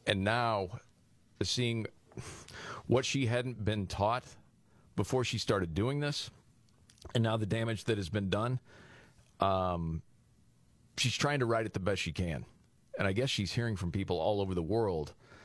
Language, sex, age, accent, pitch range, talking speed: English, male, 40-59, American, 95-120 Hz, 165 wpm